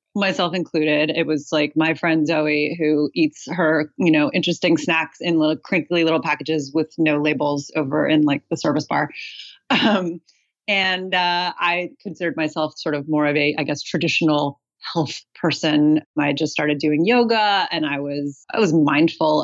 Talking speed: 175 wpm